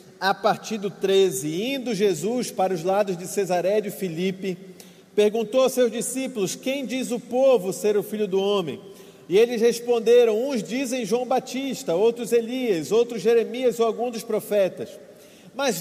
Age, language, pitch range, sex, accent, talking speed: 40-59, Portuguese, 195-240 Hz, male, Brazilian, 160 wpm